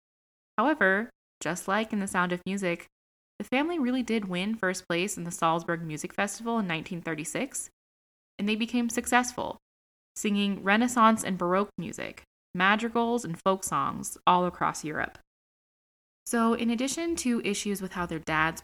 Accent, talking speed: American, 150 wpm